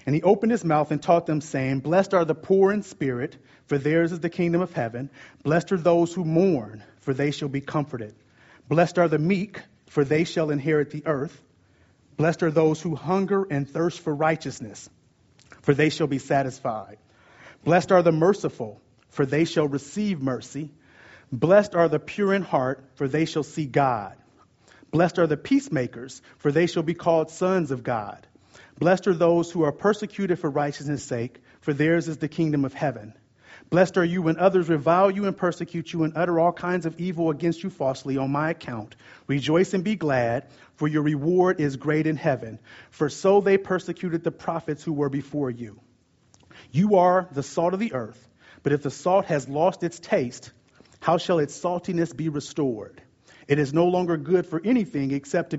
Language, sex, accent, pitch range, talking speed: English, male, American, 140-175 Hz, 190 wpm